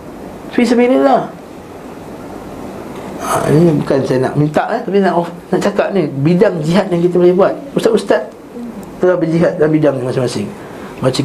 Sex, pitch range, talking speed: male, 155-205 Hz, 155 wpm